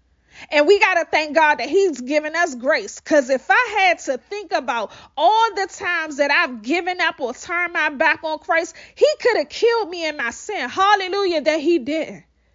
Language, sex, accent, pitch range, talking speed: English, female, American, 240-355 Hz, 205 wpm